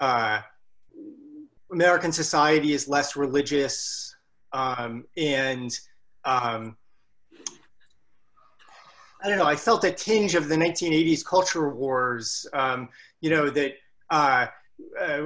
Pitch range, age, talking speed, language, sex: 140-180 Hz, 30-49, 105 wpm, English, male